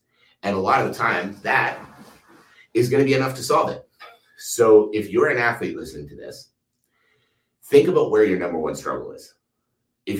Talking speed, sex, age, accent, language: 180 wpm, male, 30-49, American, English